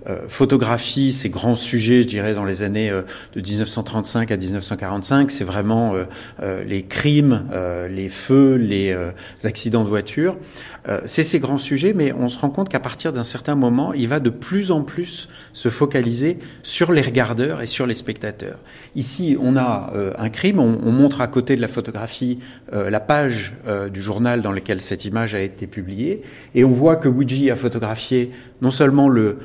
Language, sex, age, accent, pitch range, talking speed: French, male, 40-59, French, 110-140 Hz, 195 wpm